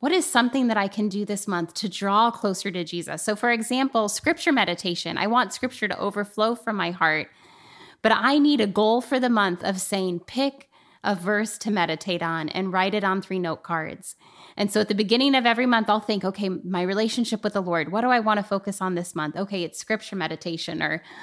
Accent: American